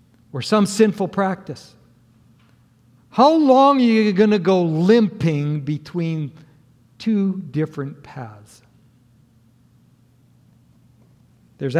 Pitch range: 125-170 Hz